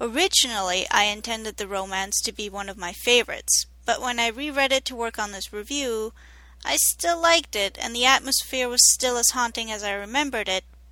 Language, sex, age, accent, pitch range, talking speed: English, female, 30-49, American, 195-245 Hz, 200 wpm